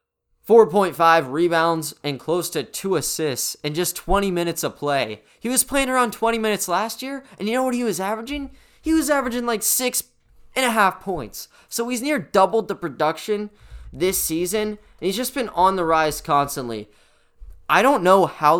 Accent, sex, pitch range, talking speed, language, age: American, male, 150-220 Hz, 180 wpm, English, 20-39